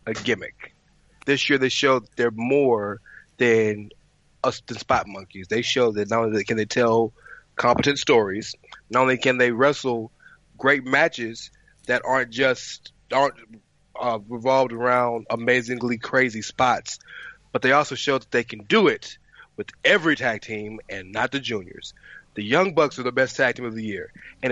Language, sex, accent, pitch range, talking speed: English, male, American, 125-165 Hz, 170 wpm